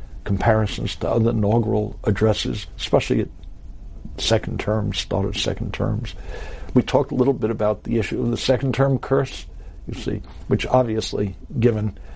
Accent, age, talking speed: American, 60-79, 150 wpm